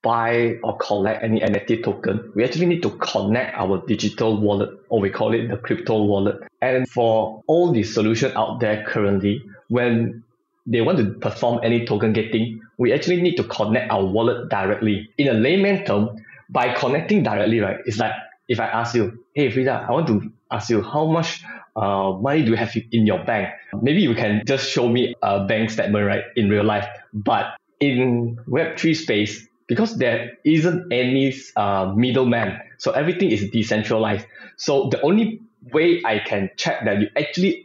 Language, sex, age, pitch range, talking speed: English, male, 20-39, 110-140 Hz, 180 wpm